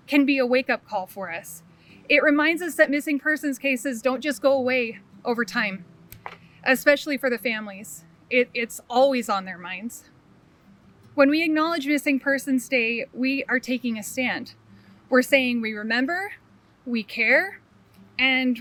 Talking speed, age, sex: 150 wpm, 20-39, female